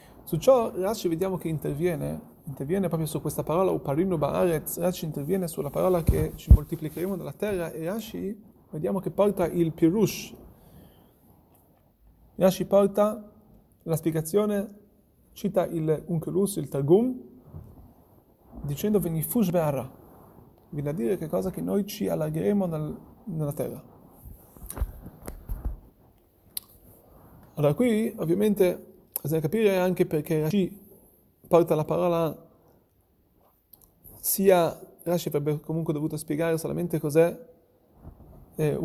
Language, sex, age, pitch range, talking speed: Italian, male, 30-49, 155-190 Hz, 110 wpm